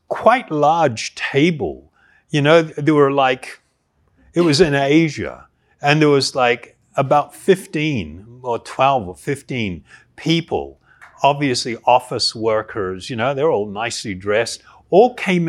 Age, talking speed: 60-79, 130 wpm